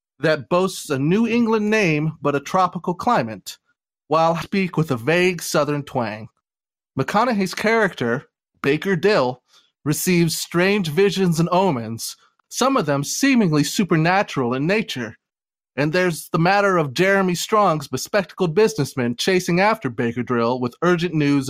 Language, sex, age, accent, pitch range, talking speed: English, male, 30-49, American, 135-190 Hz, 140 wpm